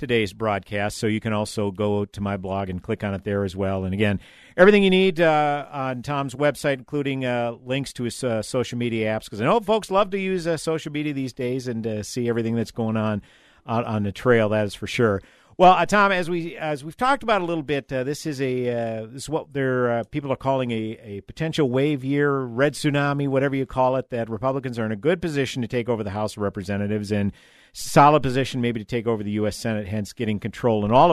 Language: English